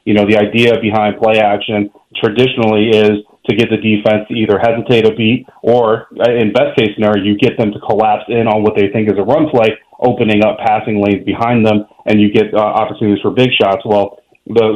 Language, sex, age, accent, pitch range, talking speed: English, male, 30-49, American, 105-120 Hz, 215 wpm